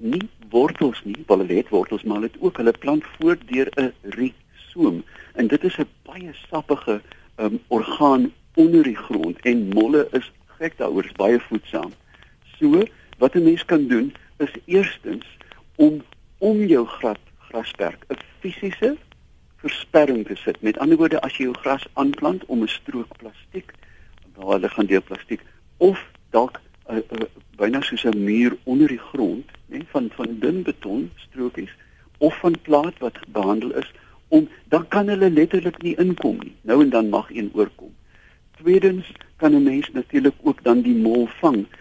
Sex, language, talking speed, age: male, Dutch, 160 wpm, 60-79